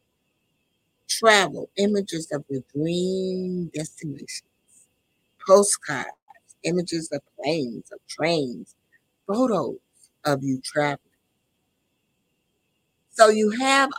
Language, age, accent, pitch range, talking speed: English, 60-79, American, 145-220 Hz, 80 wpm